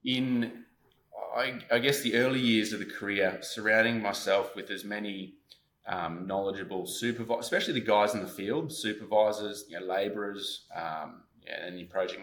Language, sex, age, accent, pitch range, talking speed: English, male, 20-39, Australian, 95-110 Hz, 165 wpm